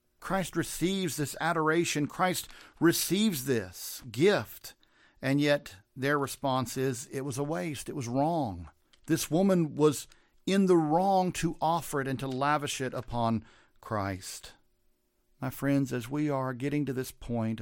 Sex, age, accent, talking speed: male, 50-69, American, 150 wpm